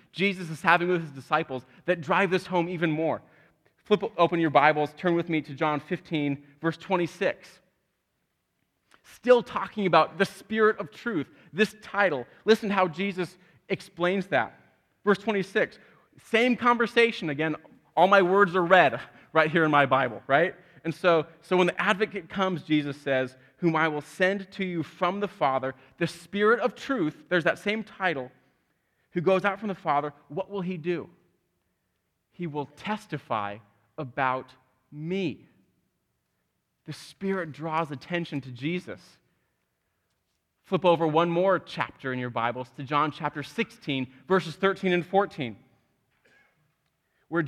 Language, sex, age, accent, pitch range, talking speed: English, male, 30-49, American, 145-190 Hz, 150 wpm